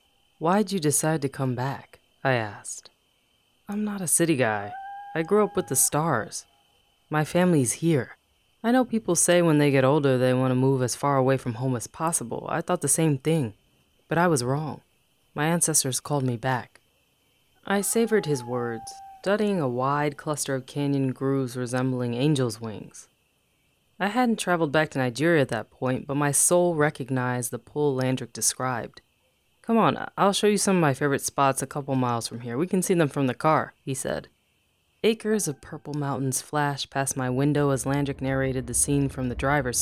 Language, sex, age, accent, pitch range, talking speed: English, female, 20-39, American, 125-165 Hz, 190 wpm